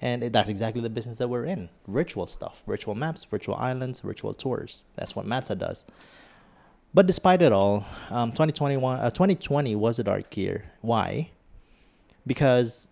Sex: male